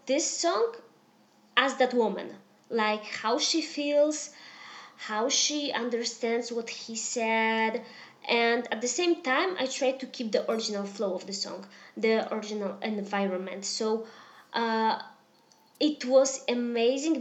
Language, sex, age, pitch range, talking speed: English, female, 20-39, 215-270 Hz, 135 wpm